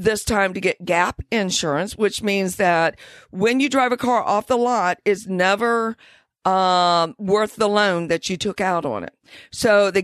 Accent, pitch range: American, 190-250 Hz